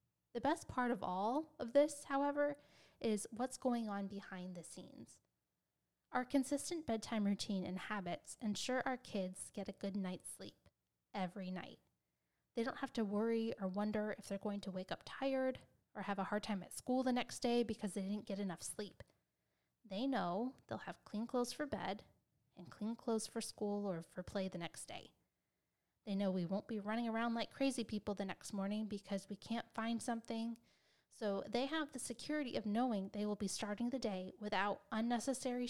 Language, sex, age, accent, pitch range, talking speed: English, female, 10-29, American, 190-245 Hz, 190 wpm